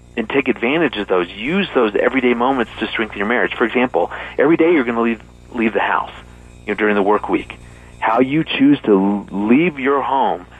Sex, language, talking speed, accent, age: male, English, 210 wpm, American, 40-59